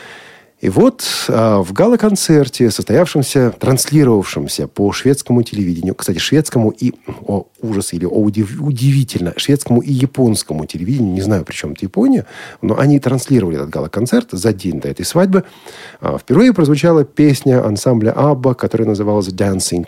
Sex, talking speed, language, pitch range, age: male, 140 wpm, Russian, 110-150 Hz, 40-59